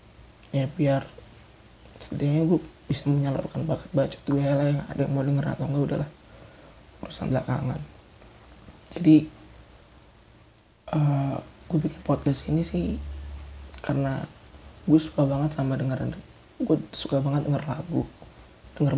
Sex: male